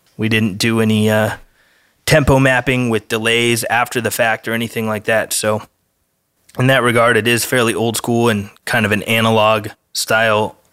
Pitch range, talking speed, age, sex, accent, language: 105-120 Hz, 175 wpm, 20-39, male, American, English